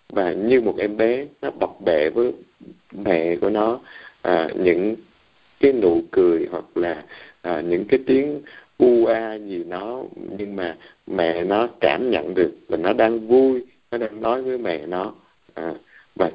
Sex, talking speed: male, 170 wpm